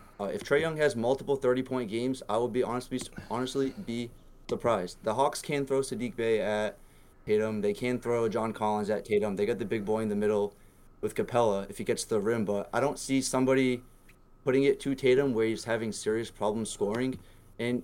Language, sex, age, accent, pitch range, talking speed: English, male, 20-39, American, 105-130 Hz, 210 wpm